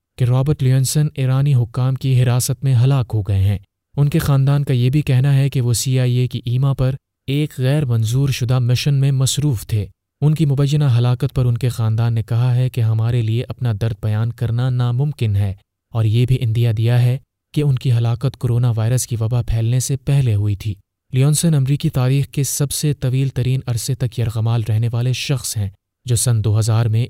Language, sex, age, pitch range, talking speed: Urdu, male, 30-49, 115-135 Hz, 205 wpm